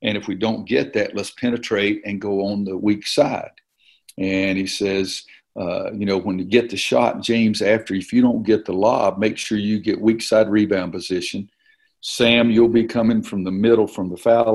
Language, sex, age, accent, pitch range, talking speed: English, male, 50-69, American, 95-115 Hz, 210 wpm